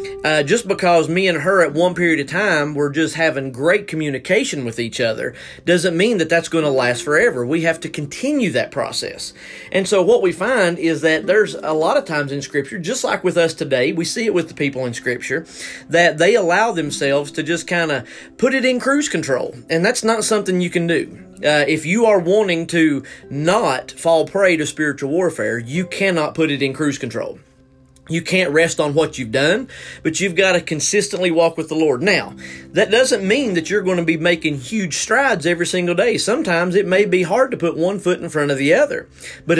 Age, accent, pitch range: 30-49, American, 145-185 Hz